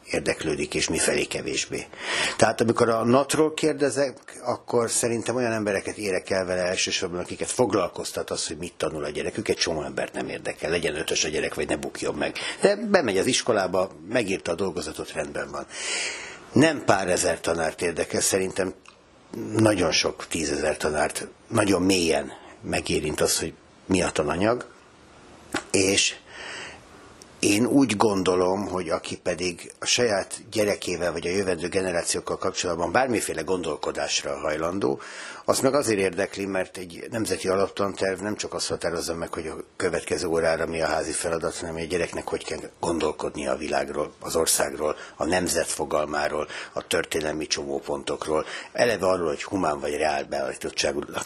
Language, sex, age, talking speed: Hungarian, male, 60-79, 145 wpm